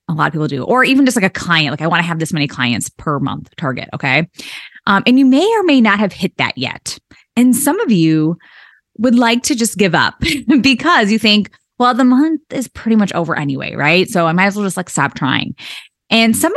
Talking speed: 245 wpm